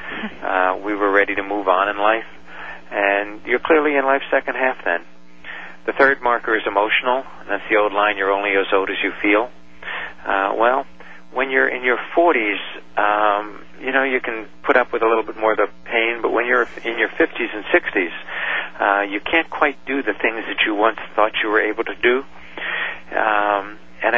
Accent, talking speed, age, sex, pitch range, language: American, 200 wpm, 50-69, male, 95-120 Hz, English